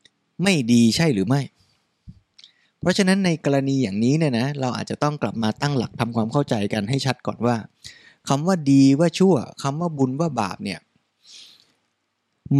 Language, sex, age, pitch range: Thai, male, 20-39, 120-160 Hz